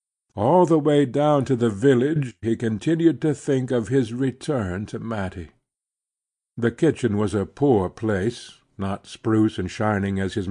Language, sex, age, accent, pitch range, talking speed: English, male, 60-79, American, 110-140 Hz, 160 wpm